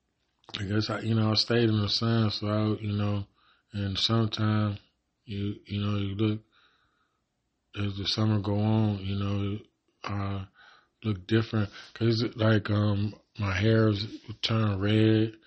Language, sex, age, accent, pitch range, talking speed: English, male, 20-39, American, 100-110 Hz, 145 wpm